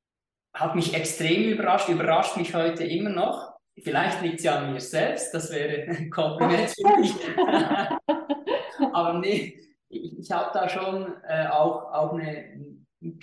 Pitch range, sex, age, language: 140-170 Hz, male, 20-39, German